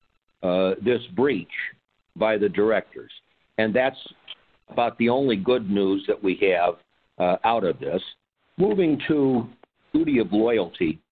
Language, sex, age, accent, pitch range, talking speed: English, male, 60-79, American, 110-130 Hz, 135 wpm